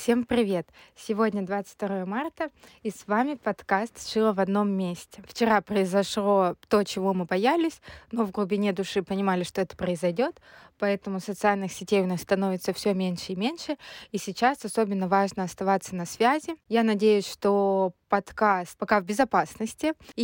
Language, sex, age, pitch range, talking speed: Russian, female, 20-39, 200-240 Hz, 165 wpm